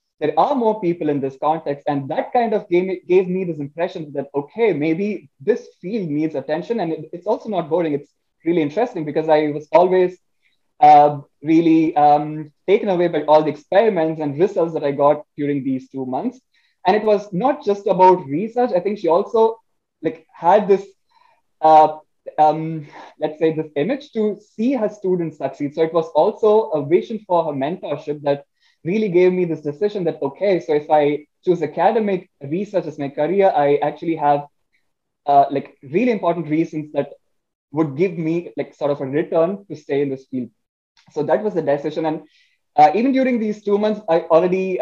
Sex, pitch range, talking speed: male, 145-195 Hz, 185 wpm